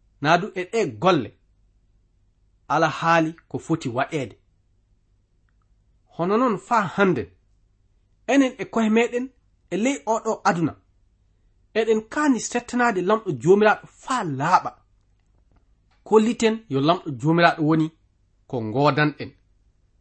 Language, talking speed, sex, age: English, 95 wpm, male, 40-59